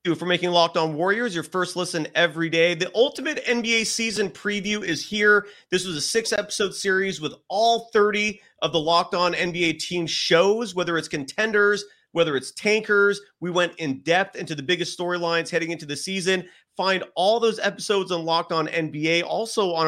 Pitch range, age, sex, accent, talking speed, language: 150-200 Hz, 30-49, male, American, 185 wpm, English